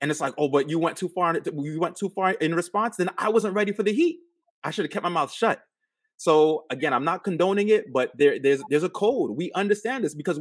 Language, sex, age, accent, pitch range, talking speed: English, male, 20-39, American, 155-230 Hz, 270 wpm